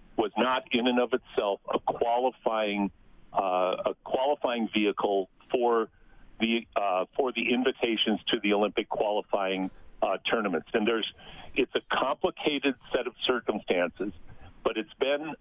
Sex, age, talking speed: male, 50-69, 135 wpm